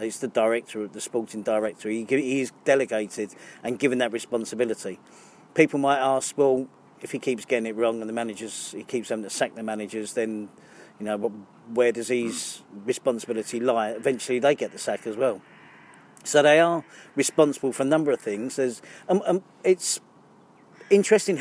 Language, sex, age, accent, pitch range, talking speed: English, male, 40-59, British, 115-145 Hz, 175 wpm